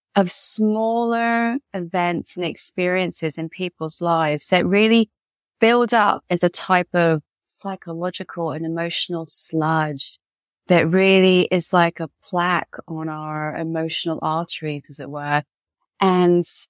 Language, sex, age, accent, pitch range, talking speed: English, female, 20-39, British, 160-205 Hz, 120 wpm